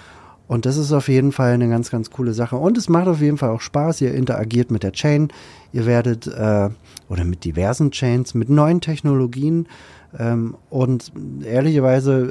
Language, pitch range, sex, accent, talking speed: German, 110-135 Hz, male, German, 180 wpm